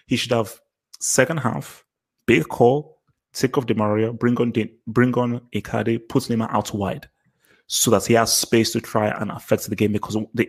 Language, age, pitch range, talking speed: English, 20-39, 110-120 Hz, 190 wpm